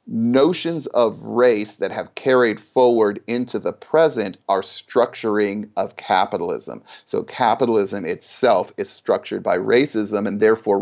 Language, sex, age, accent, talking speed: English, male, 40-59, American, 130 wpm